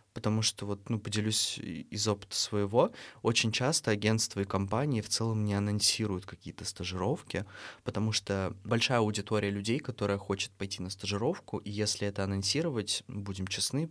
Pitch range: 100-115 Hz